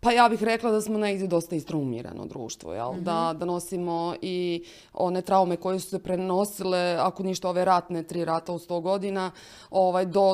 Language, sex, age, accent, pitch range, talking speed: Croatian, female, 30-49, native, 170-195 Hz, 180 wpm